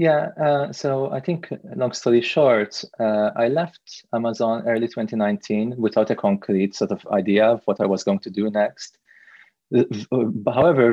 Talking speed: 160 wpm